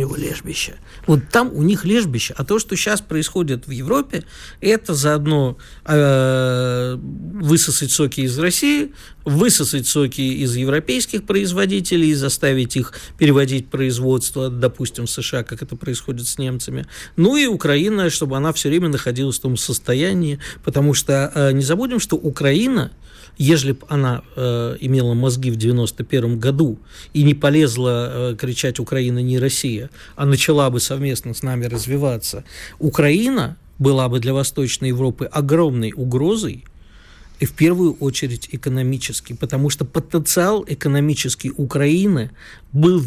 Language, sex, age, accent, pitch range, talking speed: Russian, male, 50-69, native, 125-155 Hz, 140 wpm